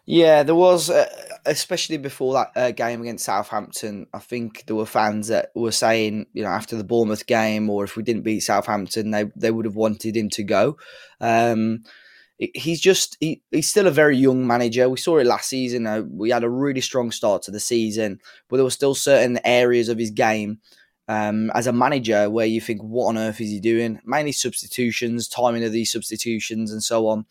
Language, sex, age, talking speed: English, male, 20-39, 210 wpm